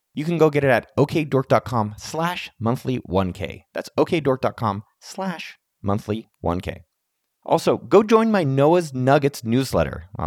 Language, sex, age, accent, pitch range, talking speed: English, male, 30-49, American, 110-155 Hz, 135 wpm